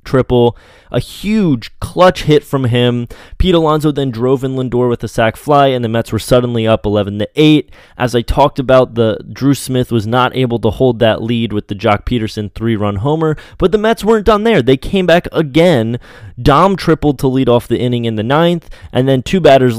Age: 20-39